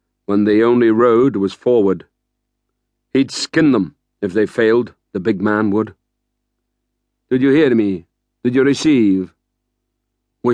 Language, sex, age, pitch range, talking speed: English, male, 50-69, 105-125 Hz, 135 wpm